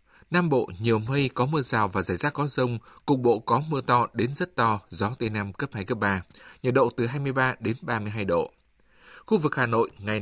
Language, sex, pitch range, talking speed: Vietnamese, male, 105-135 Hz, 230 wpm